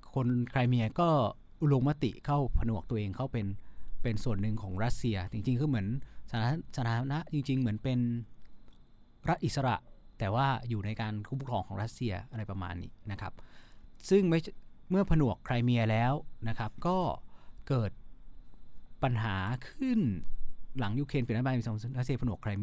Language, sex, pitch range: Thai, male, 105-135 Hz